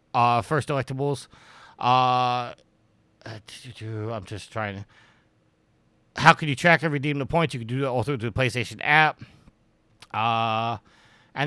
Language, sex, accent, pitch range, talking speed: English, male, American, 125-175 Hz, 135 wpm